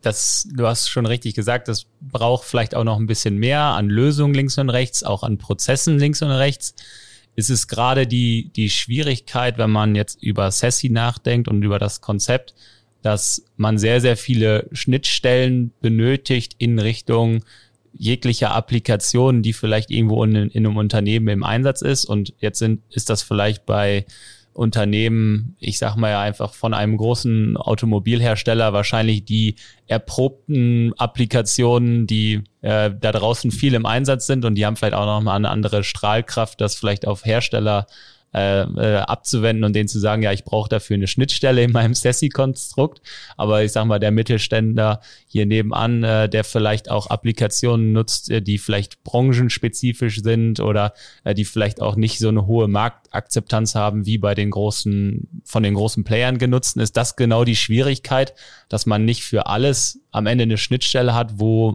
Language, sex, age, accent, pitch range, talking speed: German, male, 30-49, German, 105-120 Hz, 170 wpm